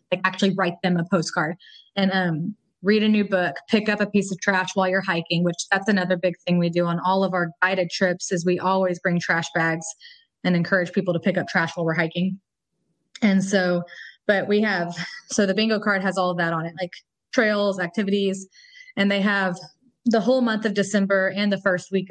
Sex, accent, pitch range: female, American, 180-200 Hz